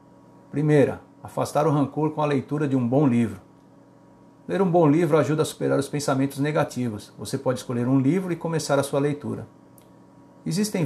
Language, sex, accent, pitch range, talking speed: Portuguese, male, Brazilian, 130-155 Hz, 175 wpm